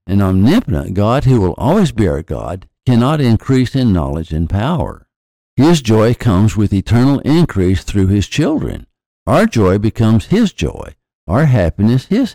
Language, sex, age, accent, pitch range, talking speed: English, male, 60-79, American, 95-125 Hz, 155 wpm